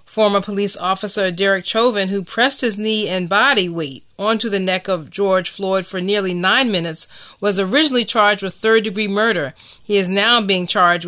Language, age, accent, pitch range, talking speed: English, 30-49, American, 185-215 Hz, 180 wpm